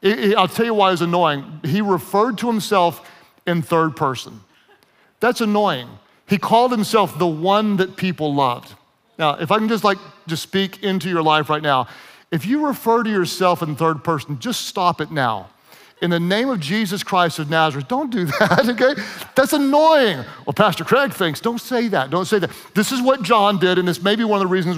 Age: 40-59